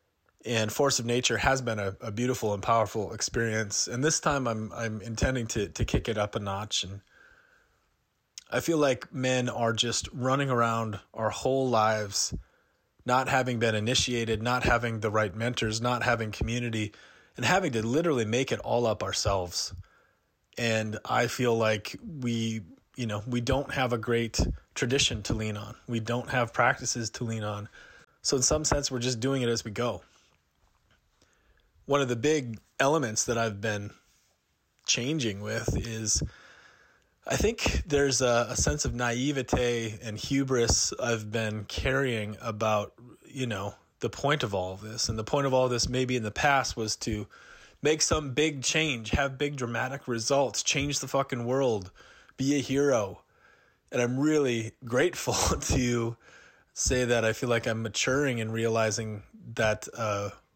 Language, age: English, 30-49